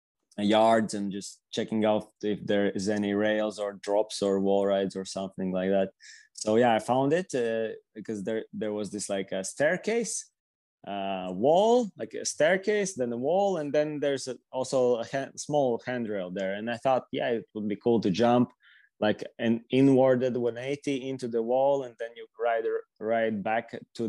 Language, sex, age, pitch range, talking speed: English, male, 20-39, 110-135 Hz, 185 wpm